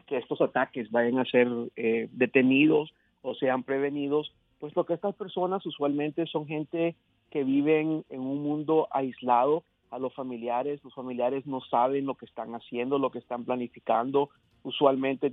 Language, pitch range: Spanish, 125-145 Hz